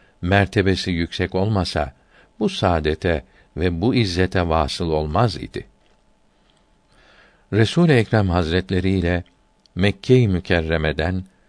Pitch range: 85-105 Hz